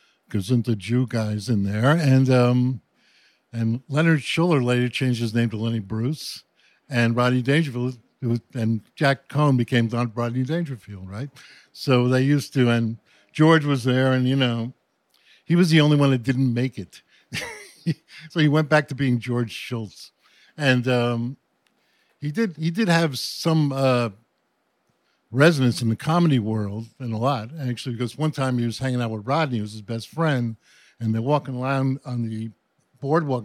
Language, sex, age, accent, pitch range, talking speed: English, male, 60-79, American, 115-140 Hz, 180 wpm